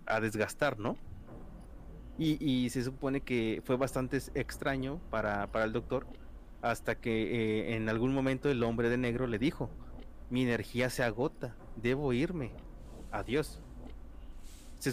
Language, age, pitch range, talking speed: Spanish, 30-49, 110-140 Hz, 140 wpm